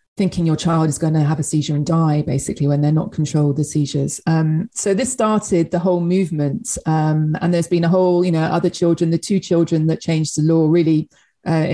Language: English